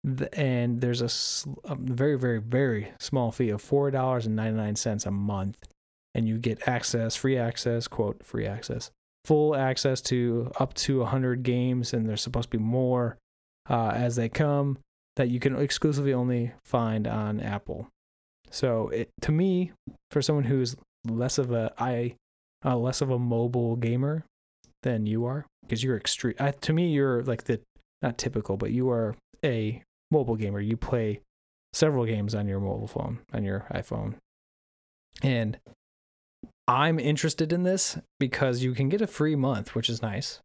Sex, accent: male, American